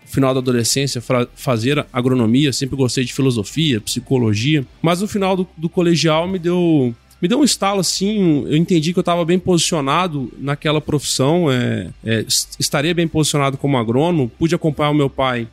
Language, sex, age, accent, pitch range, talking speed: Portuguese, male, 20-39, Brazilian, 135-180 Hz, 170 wpm